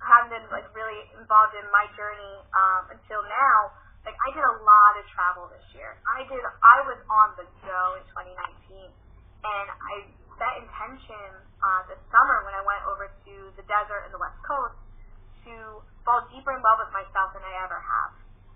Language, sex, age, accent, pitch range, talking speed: English, female, 10-29, American, 185-235 Hz, 190 wpm